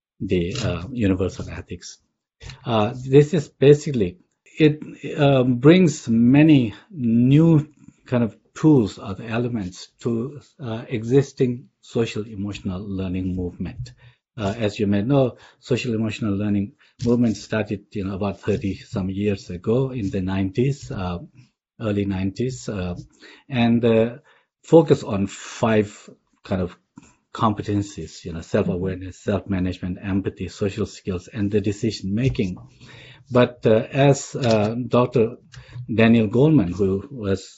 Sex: male